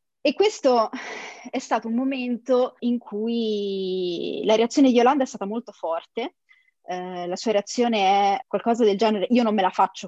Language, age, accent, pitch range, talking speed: Italian, 20-39, native, 195-245 Hz, 175 wpm